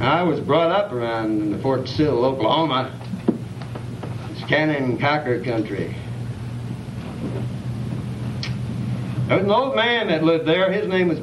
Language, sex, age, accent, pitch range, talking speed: English, male, 60-79, American, 120-165 Hz, 135 wpm